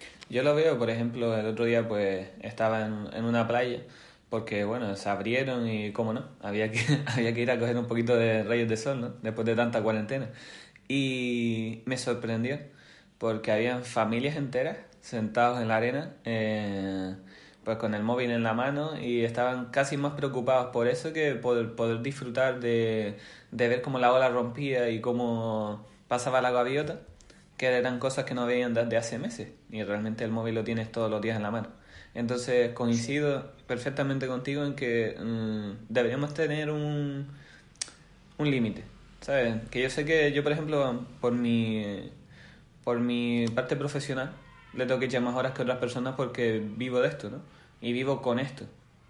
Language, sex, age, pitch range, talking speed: Spanish, male, 20-39, 115-130 Hz, 175 wpm